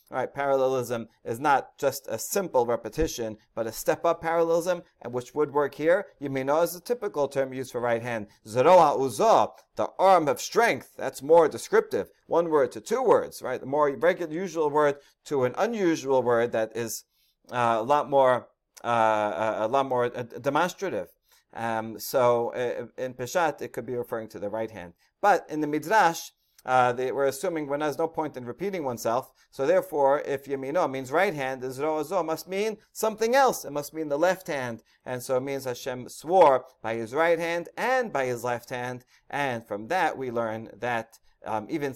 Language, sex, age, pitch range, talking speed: English, male, 30-49, 115-160 Hz, 190 wpm